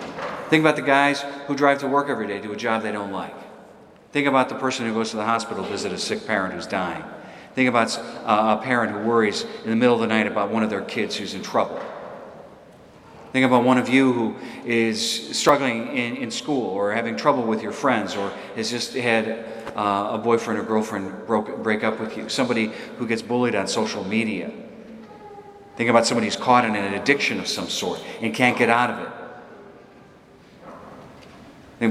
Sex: male